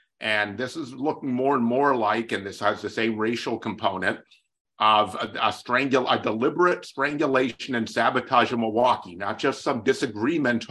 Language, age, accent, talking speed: English, 50-69, American, 170 wpm